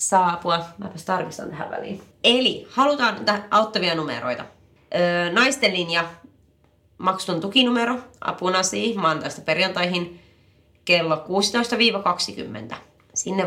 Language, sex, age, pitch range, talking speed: Finnish, female, 30-49, 155-210 Hz, 100 wpm